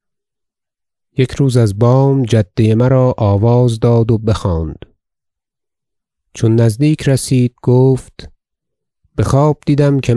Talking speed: 105 wpm